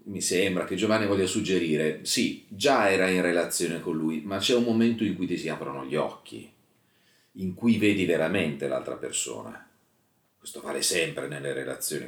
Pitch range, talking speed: 80-100 Hz, 175 wpm